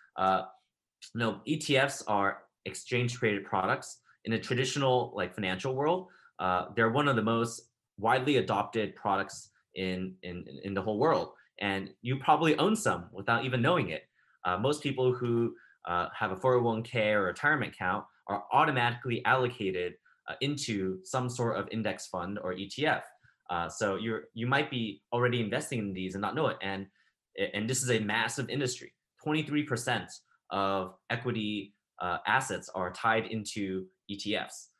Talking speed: 150 wpm